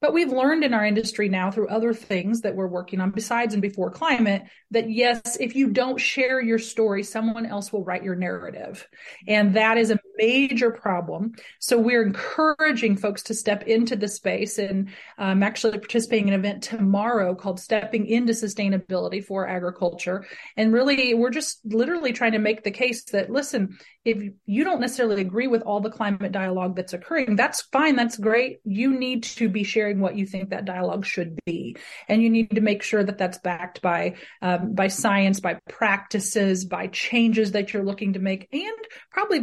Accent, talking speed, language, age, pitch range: American, 190 wpm, English, 30-49, 200-235 Hz